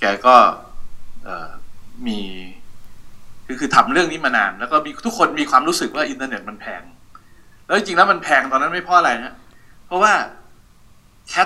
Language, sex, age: Thai, male, 60-79